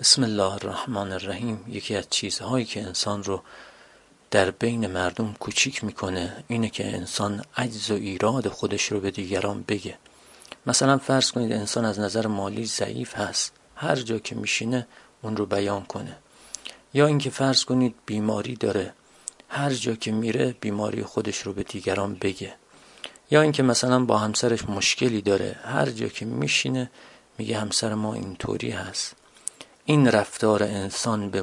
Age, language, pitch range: 40-59, Persian, 100-125 Hz